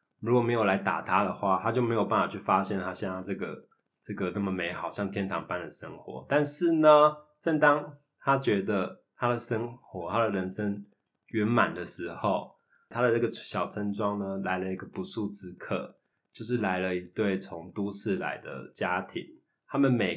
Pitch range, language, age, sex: 100-130 Hz, Chinese, 20-39, male